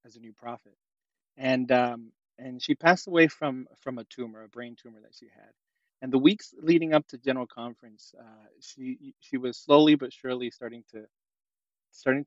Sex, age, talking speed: male, 20-39, 185 wpm